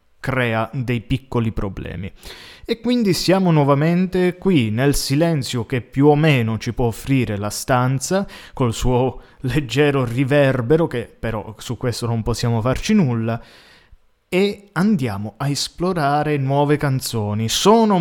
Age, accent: 20-39, native